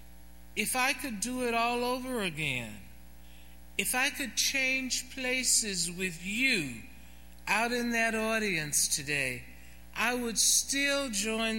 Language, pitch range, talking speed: English, 135-225 Hz, 125 wpm